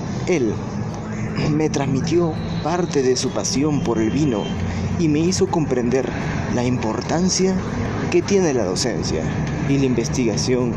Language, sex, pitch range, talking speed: Spanish, male, 120-155 Hz, 130 wpm